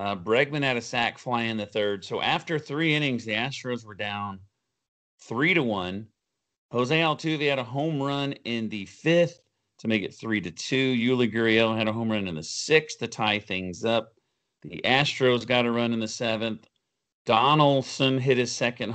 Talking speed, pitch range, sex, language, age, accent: 185 wpm, 110-140 Hz, male, English, 40-59, American